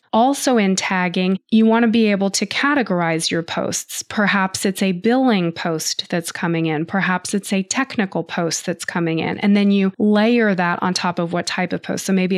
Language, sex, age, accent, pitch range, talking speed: English, female, 20-39, American, 180-210 Hz, 205 wpm